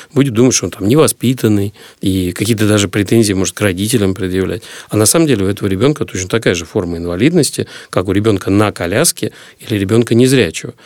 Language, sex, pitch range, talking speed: Russian, male, 95-125 Hz, 190 wpm